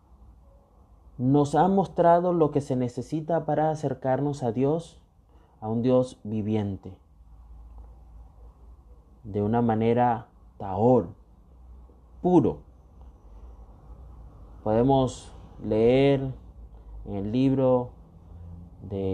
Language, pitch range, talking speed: Spanish, 85-135 Hz, 80 wpm